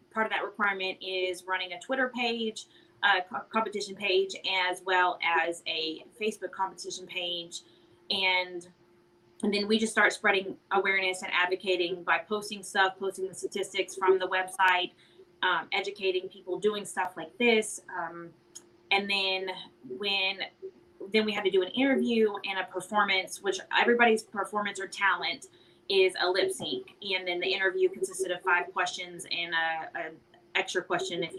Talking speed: 155 wpm